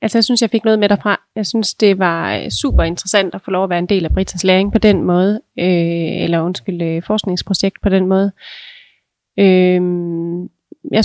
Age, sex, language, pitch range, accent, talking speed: 30-49, female, Danish, 180-220 Hz, native, 185 wpm